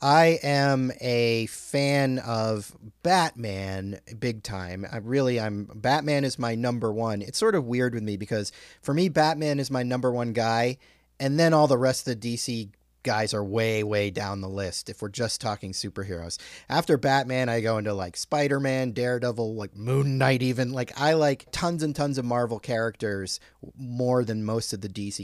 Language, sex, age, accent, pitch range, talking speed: English, male, 30-49, American, 105-135 Hz, 185 wpm